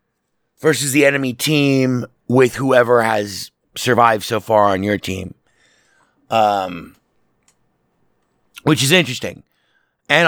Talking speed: 105 wpm